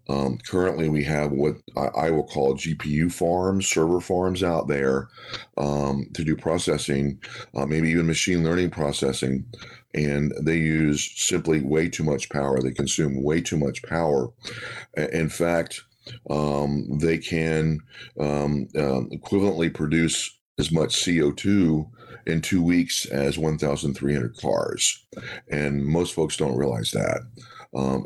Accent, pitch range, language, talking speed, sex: American, 70-85 Hz, English, 135 wpm, male